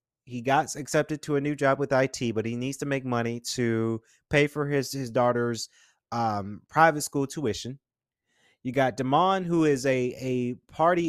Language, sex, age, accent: English, male, 30-49, American